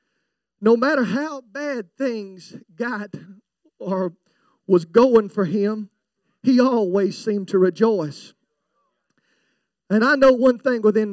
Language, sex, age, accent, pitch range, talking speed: English, male, 40-59, American, 200-265 Hz, 120 wpm